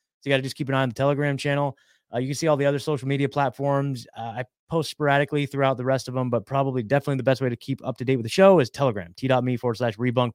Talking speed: 295 wpm